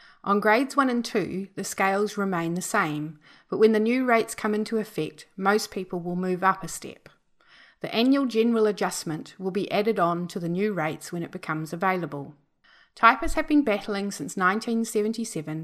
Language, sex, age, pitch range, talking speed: English, female, 30-49, 165-215 Hz, 180 wpm